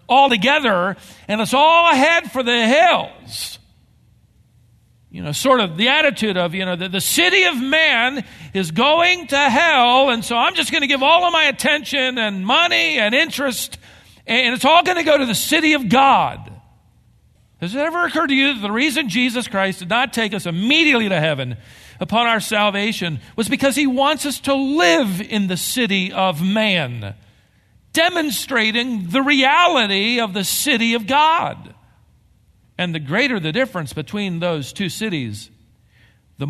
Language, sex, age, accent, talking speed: English, male, 50-69, American, 170 wpm